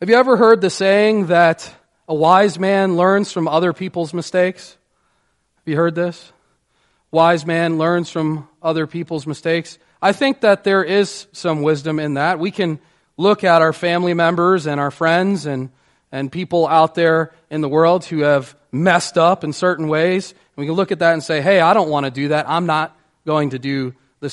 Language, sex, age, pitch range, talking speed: English, male, 30-49, 150-185 Hz, 200 wpm